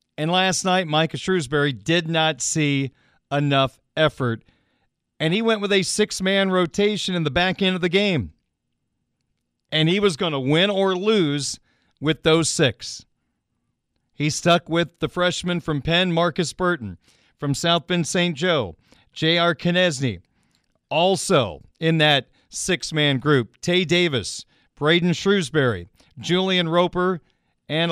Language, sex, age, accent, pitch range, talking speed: English, male, 40-59, American, 145-185 Hz, 135 wpm